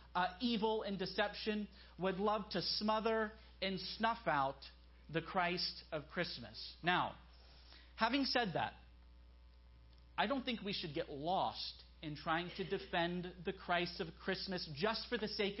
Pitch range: 150-230 Hz